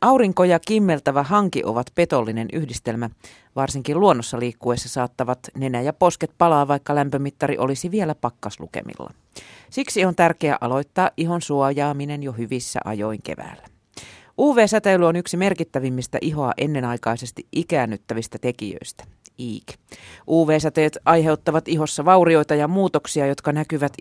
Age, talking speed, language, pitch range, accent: 40-59, 115 wpm, Finnish, 125-160 Hz, native